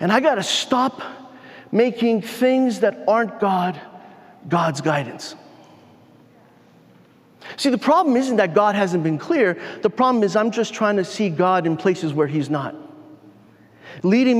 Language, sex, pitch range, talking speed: English, male, 185-240 Hz, 150 wpm